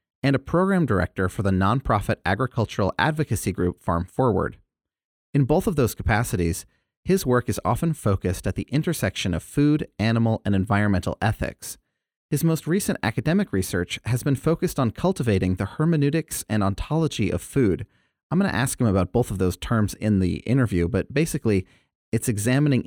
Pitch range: 95-125 Hz